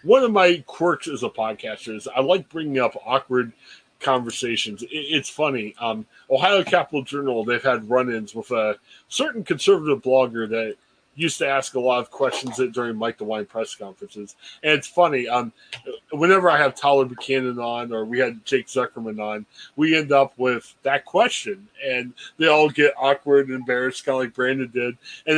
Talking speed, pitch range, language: 180 wpm, 130-195 Hz, English